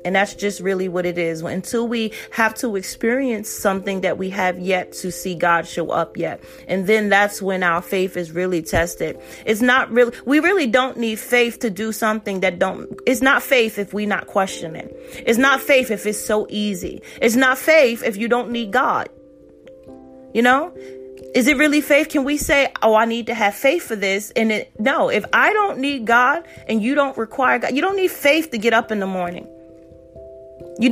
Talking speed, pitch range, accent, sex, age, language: 210 wpm, 195-250 Hz, American, female, 30-49, English